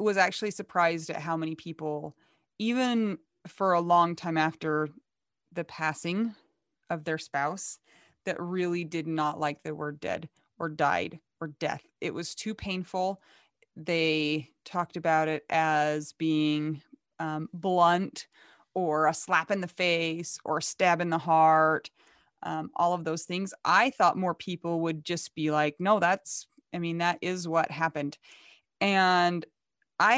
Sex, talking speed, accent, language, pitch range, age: female, 155 wpm, American, English, 155-185 Hz, 30-49